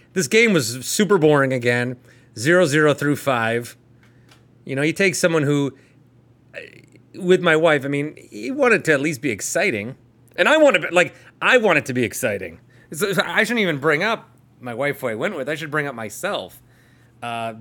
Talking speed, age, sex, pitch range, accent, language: 195 wpm, 30-49, male, 120-160 Hz, American, English